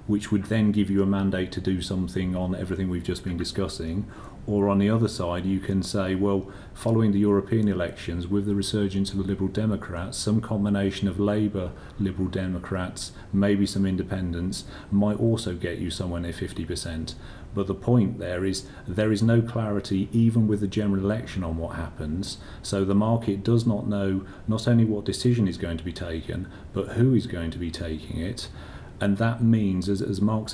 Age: 40-59